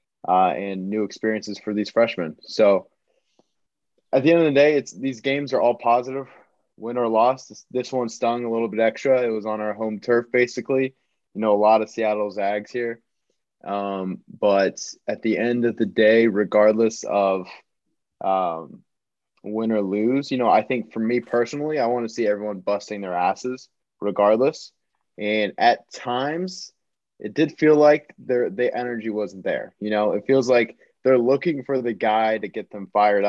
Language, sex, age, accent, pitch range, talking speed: English, male, 20-39, American, 105-130 Hz, 185 wpm